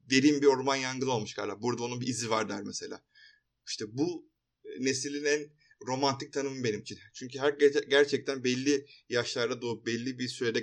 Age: 30-49